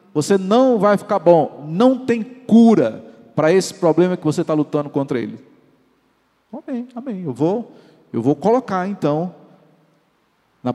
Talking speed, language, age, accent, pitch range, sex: 140 wpm, Portuguese, 50-69, Brazilian, 150-225 Hz, male